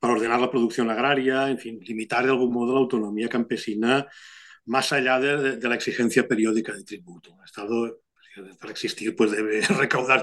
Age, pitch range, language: 40-59, 120-155 Hz, English